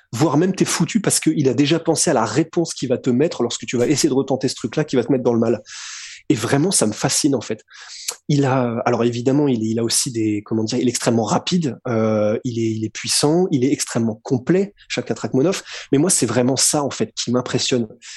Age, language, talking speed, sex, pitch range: 20-39, French, 250 wpm, male, 125-170 Hz